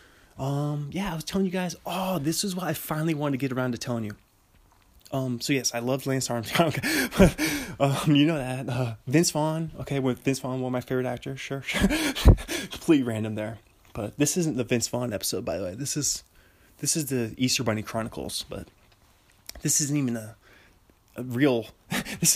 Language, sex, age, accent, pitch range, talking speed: English, male, 20-39, American, 110-140 Hz, 195 wpm